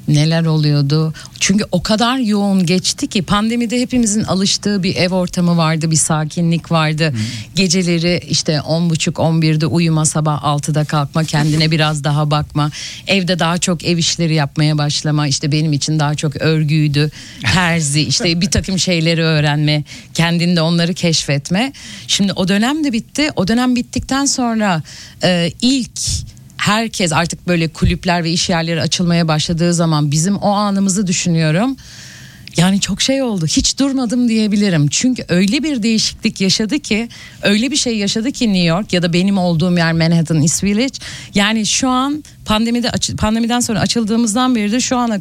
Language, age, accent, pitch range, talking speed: Turkish, 50-69, native, 155-215 Hz, 155 wpm